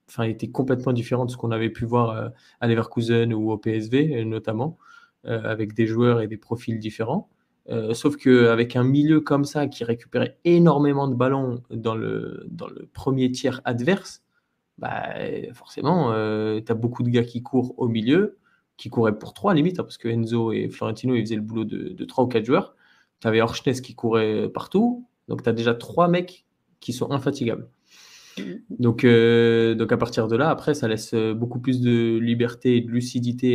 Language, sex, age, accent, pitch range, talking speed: French, male, 20-39, French, 115-130 Hz, 190 wpm